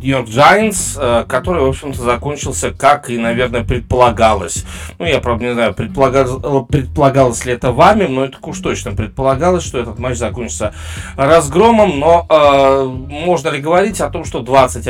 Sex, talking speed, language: male, 155 wpm, Russian